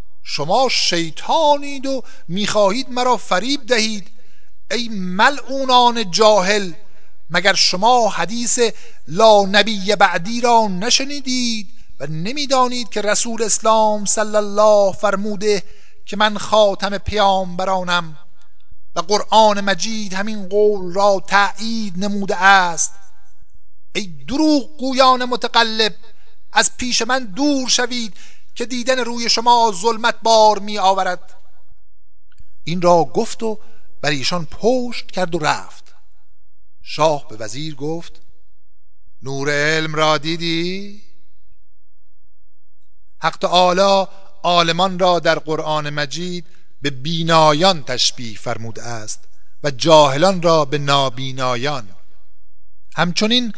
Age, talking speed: 50-69, 105 wpm